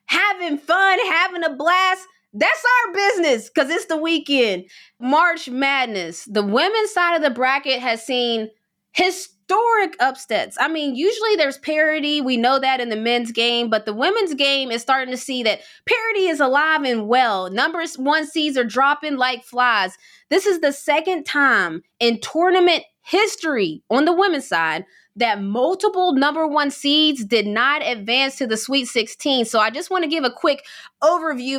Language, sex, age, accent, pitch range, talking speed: English, female, 20-39, American, 235-320 Hz, 170 wpm